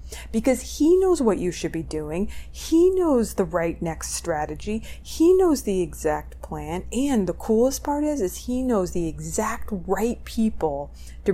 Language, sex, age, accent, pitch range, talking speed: English, female, 30-49, American, 175-235 Hz, 170 wpm